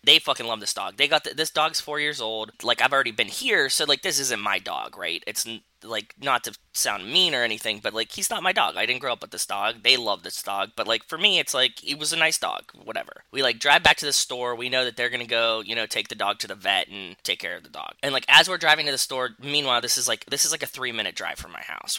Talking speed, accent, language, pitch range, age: 305 wpm, American, English, 110-150 Hz, 20-39